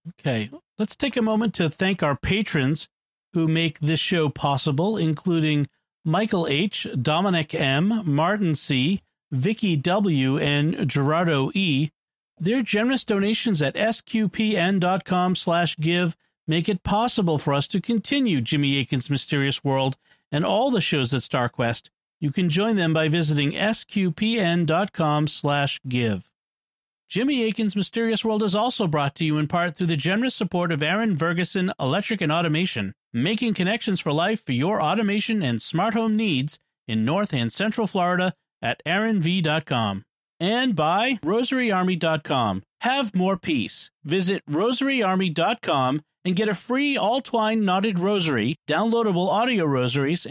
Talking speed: 140 wpm